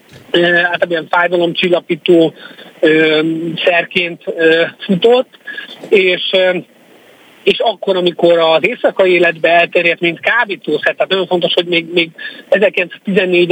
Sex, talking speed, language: male, 100 wpm, Hungarian